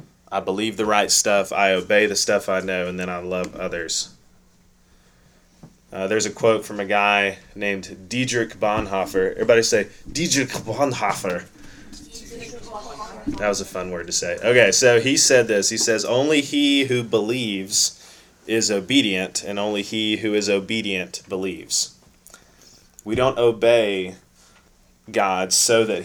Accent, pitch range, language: American, 95-115 Hz, English